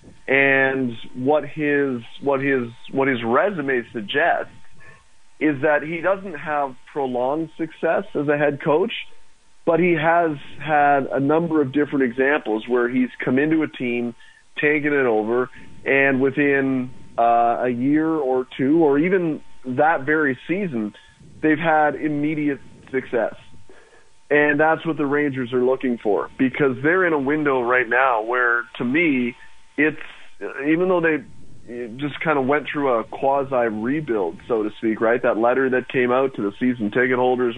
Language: English